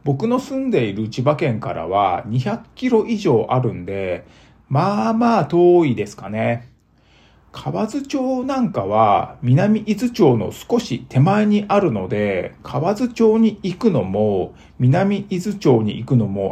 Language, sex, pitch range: Japanese, male, 110-175 Hz